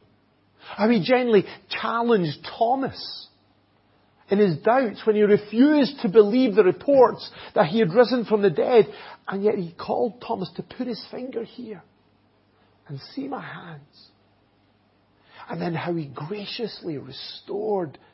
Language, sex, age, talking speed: English, male, 50-69, 140 wpm